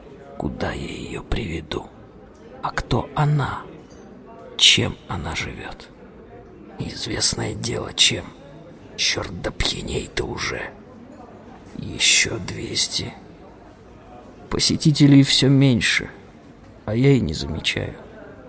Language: Russian